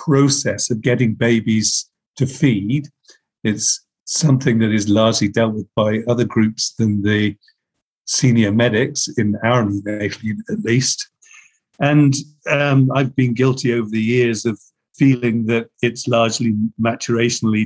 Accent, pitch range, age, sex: British, 110-130 Hz, 50-69, male